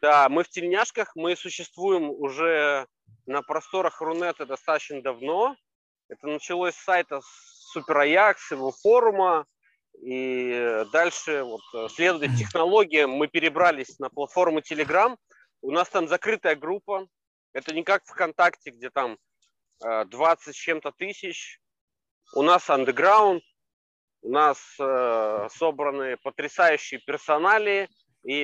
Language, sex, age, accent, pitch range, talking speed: Russian, male, 30-49, native, 135-180 Hz, 115 wpm